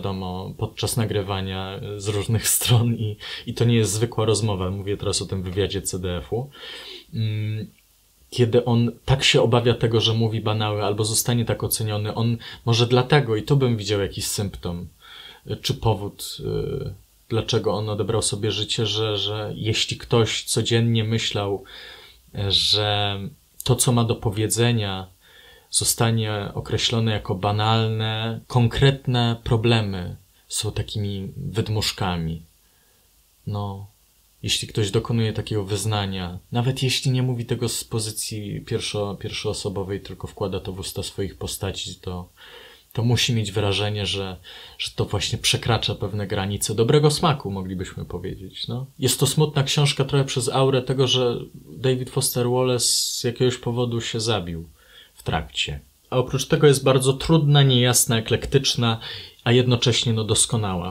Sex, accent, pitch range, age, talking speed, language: male, native, 100-125 Hz, 20-39, 135 wpm, Polish